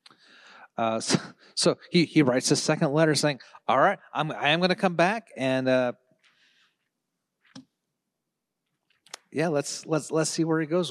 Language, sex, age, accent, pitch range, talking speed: English, male, 30-49, American, 110-165 Hz, 155 wpm